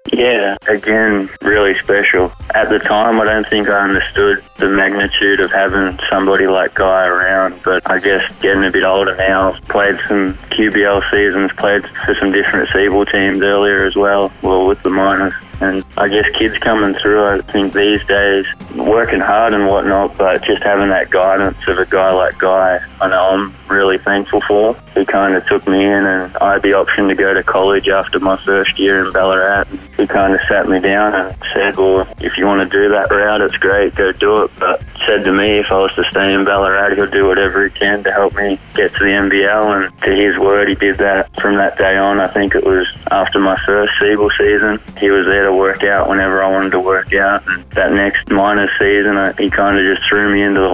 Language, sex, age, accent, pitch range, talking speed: English, male, 20-39, Australian, 95-100 Hz, 220 wpm